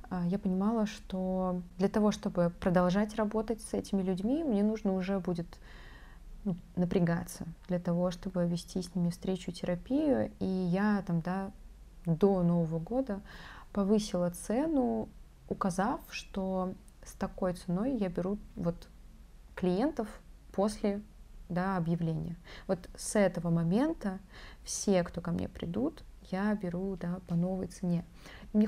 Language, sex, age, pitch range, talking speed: Russian, female, 20-39, 175-205 Hz, 120 wpm